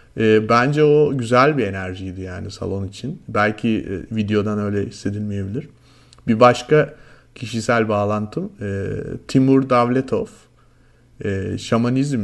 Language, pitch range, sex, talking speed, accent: Turkish, 110-160 Hz, male, 95 wpm, native